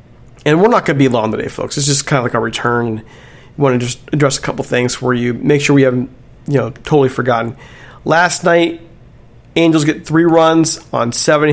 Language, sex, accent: English, male, American